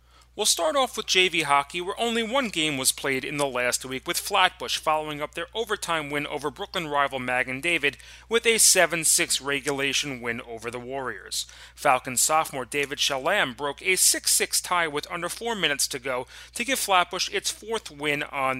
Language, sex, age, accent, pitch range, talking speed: English, male, 30-49, American, 135-185 Hz, 185 wpm